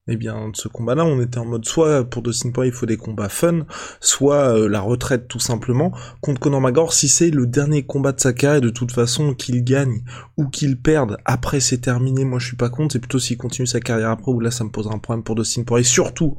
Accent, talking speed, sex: French, 255 wpm, male